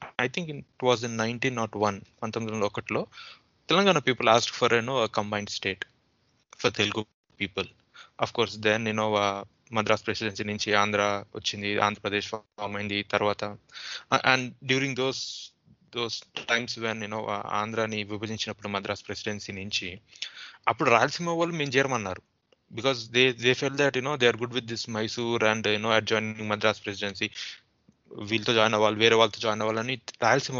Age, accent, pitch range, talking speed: 20-39, native, 105-120 Hz, 155 wpm